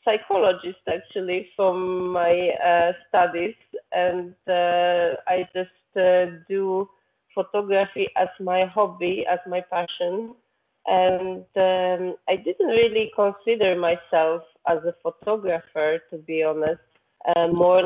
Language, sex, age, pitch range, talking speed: English, female, 30-49, 180-205 Hz, 115 wpm